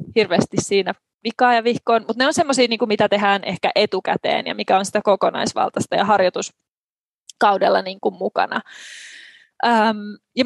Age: 20-39